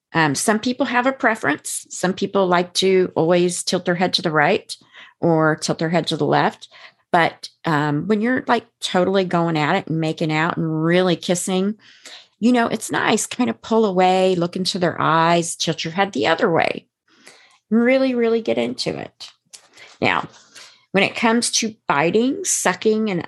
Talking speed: 180 wpm